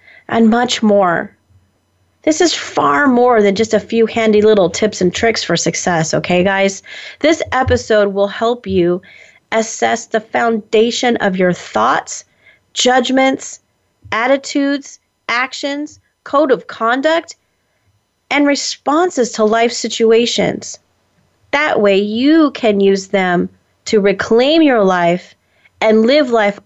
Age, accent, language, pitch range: 30-49, American, English, 190-260 Hz